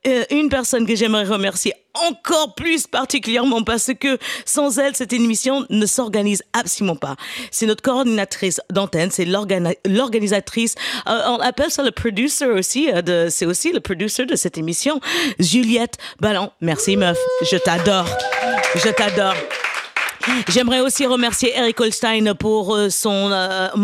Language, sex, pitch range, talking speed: French, female, 185-240 Hz, 140 wpm